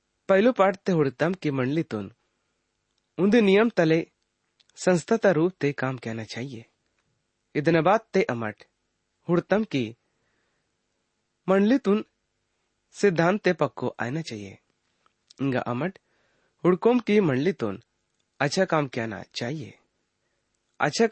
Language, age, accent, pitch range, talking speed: English, 30-49, Indian, 110-180 Hz, 95 wpm